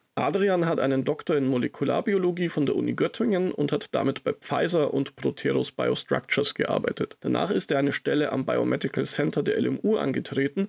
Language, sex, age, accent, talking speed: German, male, 40-59, German, 170 wpm